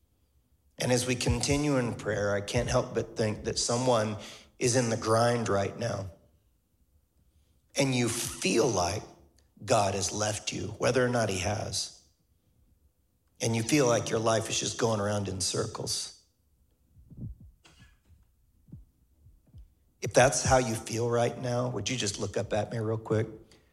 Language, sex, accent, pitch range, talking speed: English, male, American, 85-115 Hz, 150 wpm